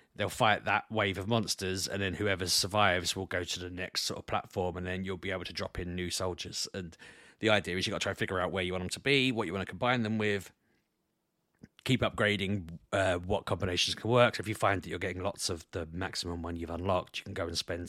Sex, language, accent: male, English, British